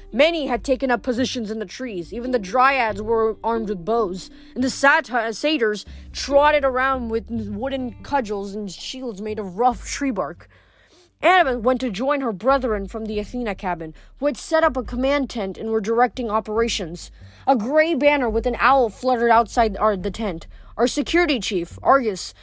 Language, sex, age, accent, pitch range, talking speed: English, female, 20-39, American, 210-260 Hz, 175 wpm